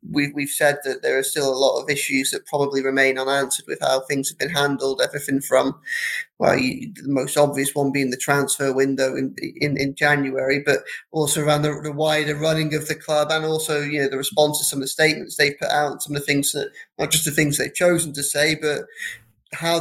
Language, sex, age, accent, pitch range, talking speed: English, male, 20-39, British, 140-170 Hz, 225 wpm